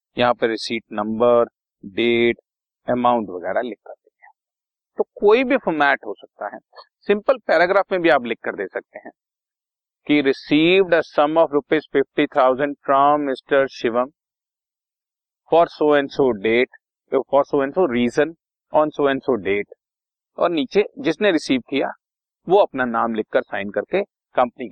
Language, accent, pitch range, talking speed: Hindi, native, 120-190 Hz, 155 wpm